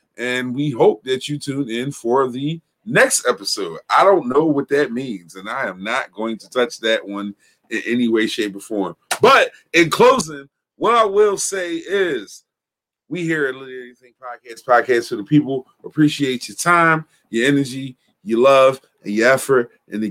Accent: American